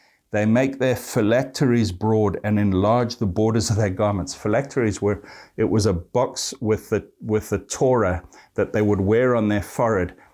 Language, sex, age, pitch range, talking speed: English, male, 50-69, 100-120 Hz, 175 wpm